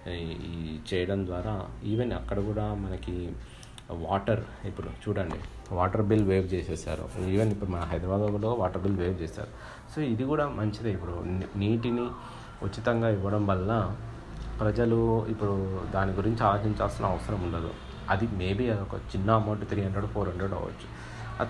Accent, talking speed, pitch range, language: native, 140 wpm, 95-110 Hz, Telugu